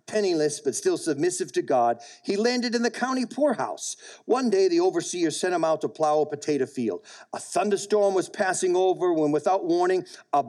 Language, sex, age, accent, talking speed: English, male, 50-69, American, 190 wpm